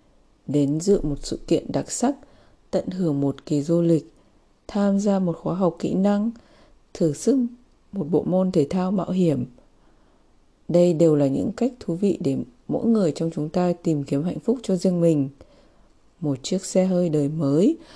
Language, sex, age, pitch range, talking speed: Vietnamese, female, 20-39, 155-205 Hz, 185 wpm